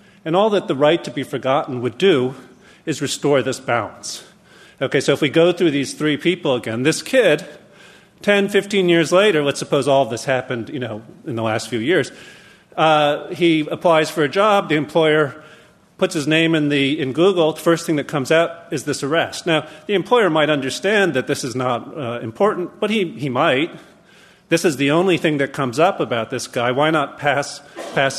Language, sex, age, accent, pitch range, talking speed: English, male, 40-59, American, 135-175 Hz, 205 wpm